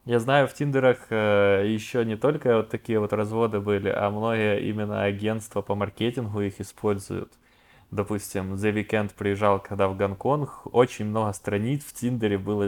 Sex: male